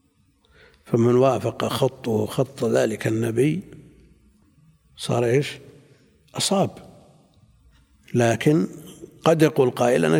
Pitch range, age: 115-155 Hz, 60-79